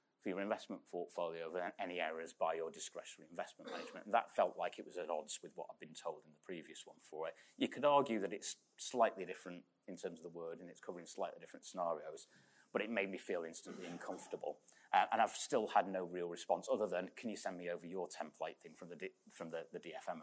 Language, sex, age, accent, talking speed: English, male, 30-49, British, 230 wpm